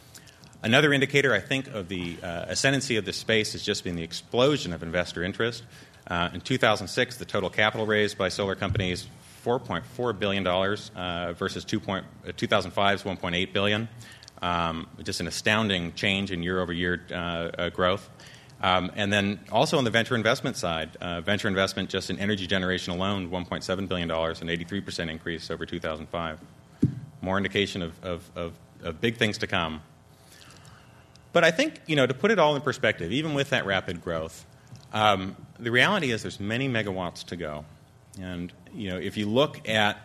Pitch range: 85-110 Hz